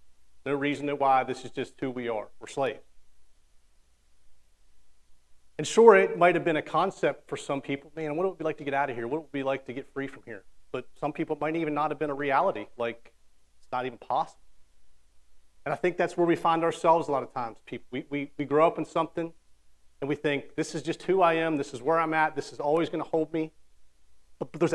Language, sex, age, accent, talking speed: English, male, 40-59, American, 245 wpm